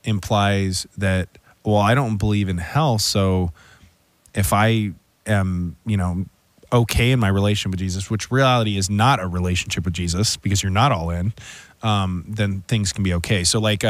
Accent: American